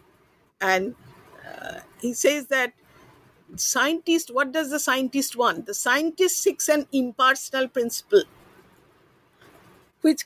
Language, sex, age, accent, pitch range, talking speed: English, female, 50-69, Indian, 225-290 Hz, 105 wpm